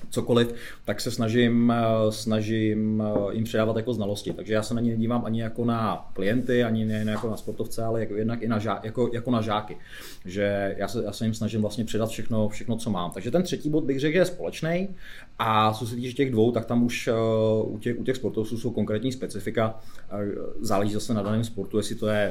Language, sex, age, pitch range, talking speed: Czech, male, 30-49, 100-110 Hz, 215 wpm